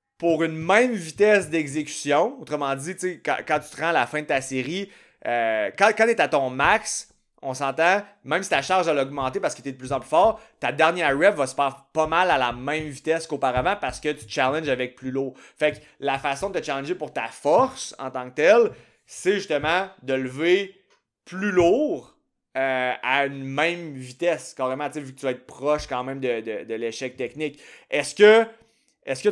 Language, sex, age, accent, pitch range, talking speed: French, male, 30-49, Canadian, 135-180 Hz, 215 wpm